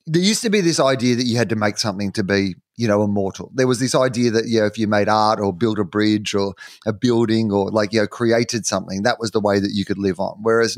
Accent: Australian